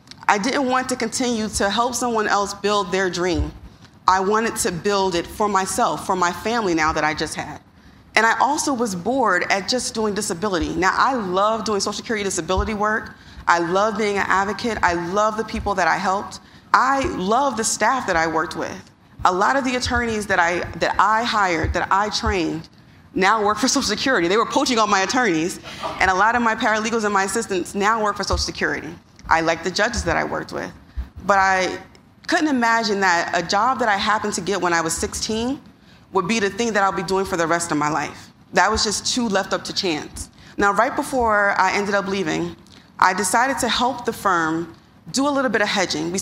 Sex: female